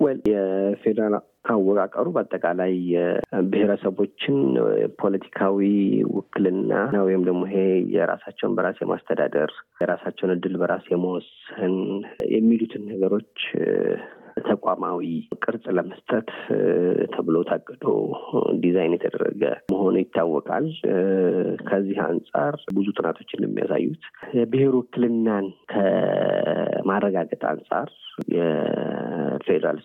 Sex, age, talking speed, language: male, 30-49, 75 wpm, Amharic